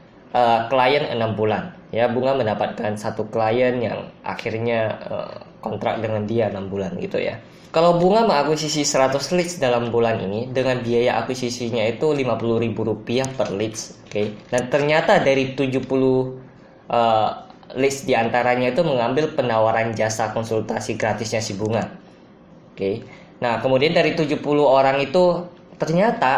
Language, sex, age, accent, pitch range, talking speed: Indonesian, female, 20-39, native, 115-140 Hz, 140 wpm